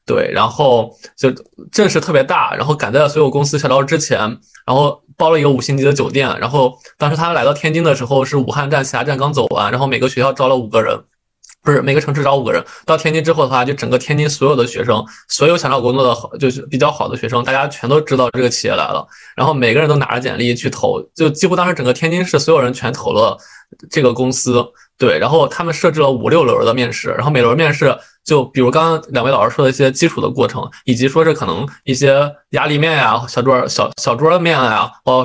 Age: 20-39